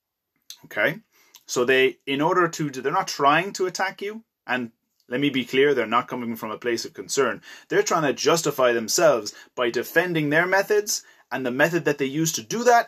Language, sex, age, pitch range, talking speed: English, male, 30-49, 130-180 Hz, 200 wpm